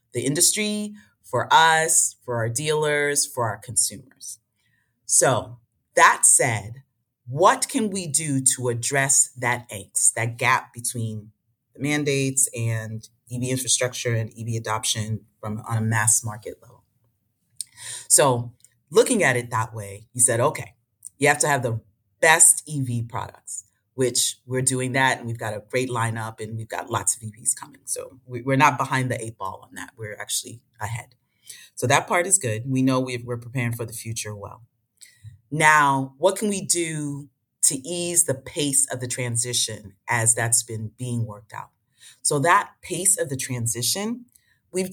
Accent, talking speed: American, 165 wpm